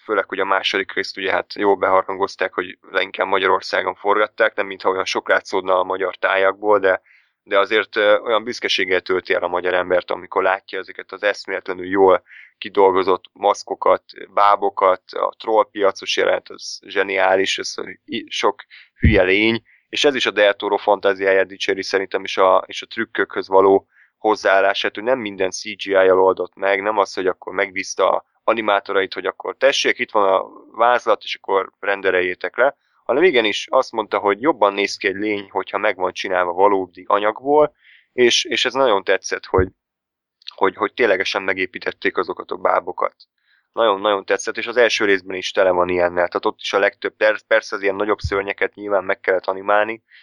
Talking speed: 170 wpm